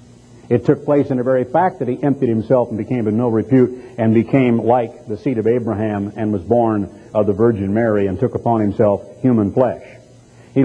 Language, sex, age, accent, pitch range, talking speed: English, male, 60-79, American, 115-145 Hz, 210 wpm